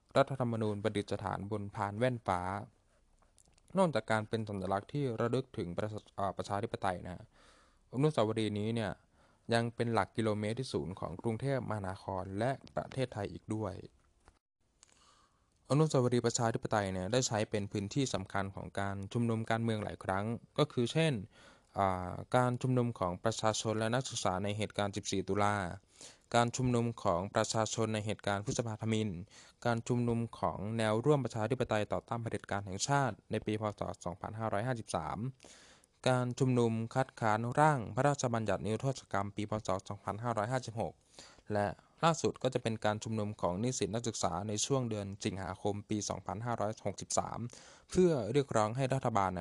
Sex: male